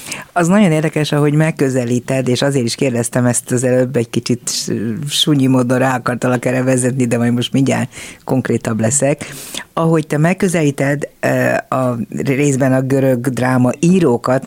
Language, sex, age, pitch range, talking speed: Hungarian, female, 50-69, 120-150 Hz, 145 wpm